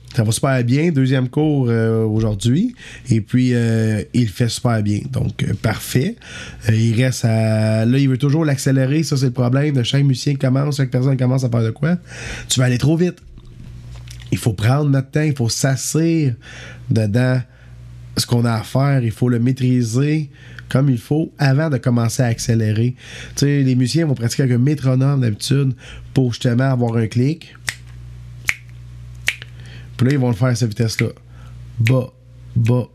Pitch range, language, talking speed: 115-135 Hz, French, 175 wpm